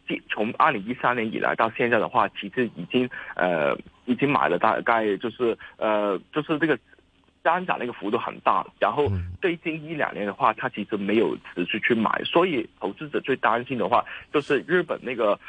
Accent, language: native, Chinese